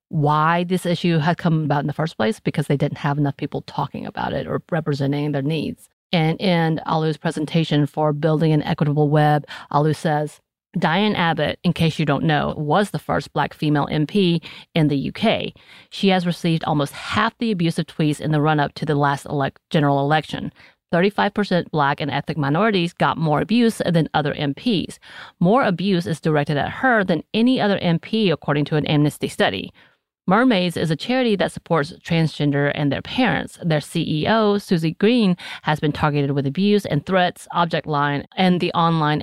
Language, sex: English, female